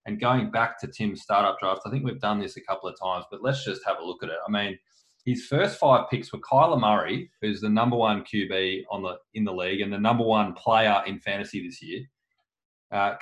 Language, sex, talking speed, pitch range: English, male, 245 wpm, 105-130 Hz